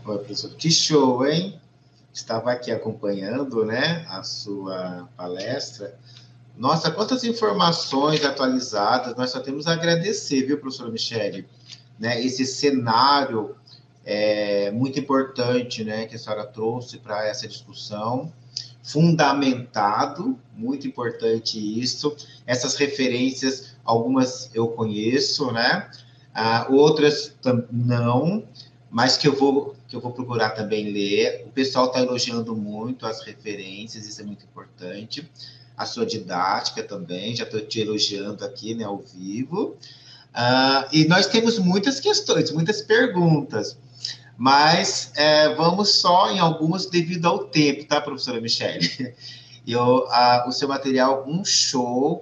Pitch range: 115-145 Hz